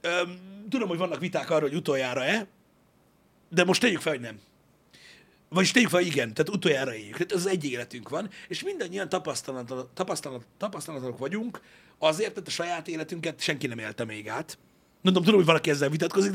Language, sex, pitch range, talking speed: Hungarian, male, 135-185 Hz, 180 wpm